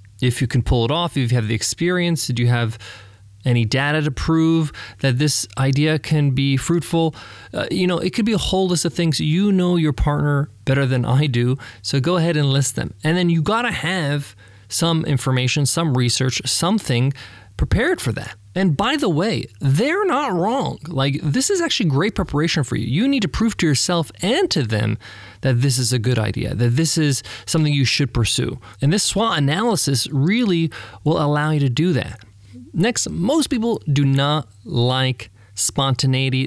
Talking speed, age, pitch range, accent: 195 wpm, 20-39, 120-165 Hz, American